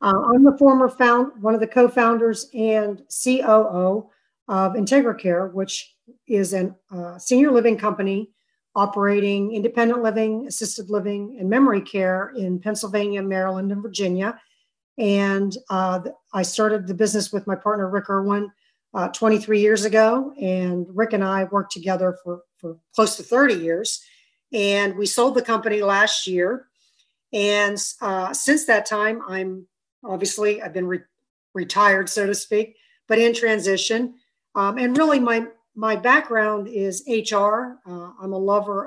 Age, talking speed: 50-69, 150 wpm